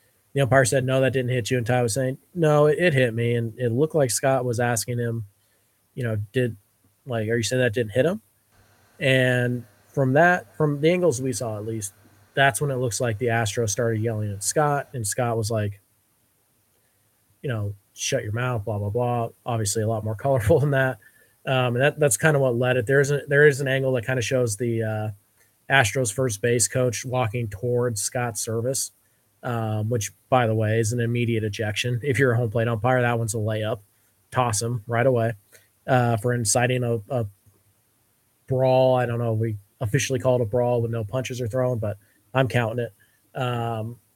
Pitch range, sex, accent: 115-130 Hz, male, American